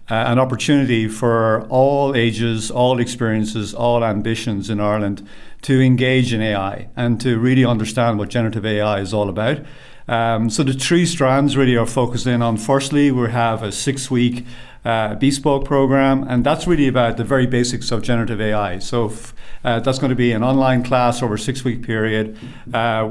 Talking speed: 175 wpm